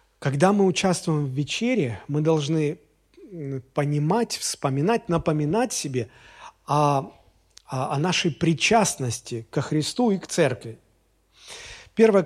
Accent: native